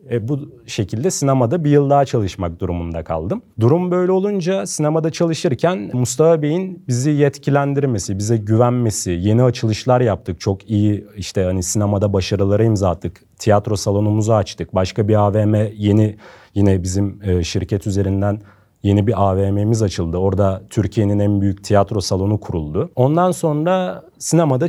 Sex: male